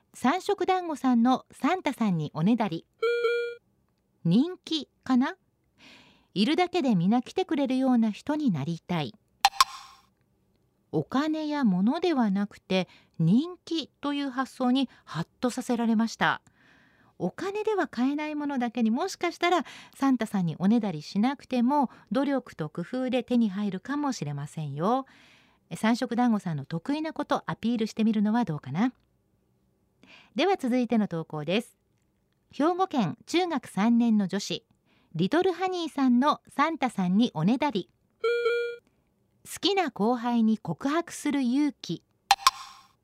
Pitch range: 205-285 Hz